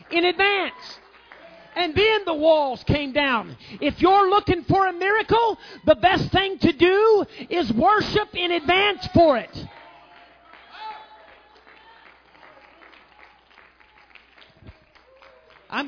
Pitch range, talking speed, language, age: 235-315 Hz, 100 wpm, English, 40-59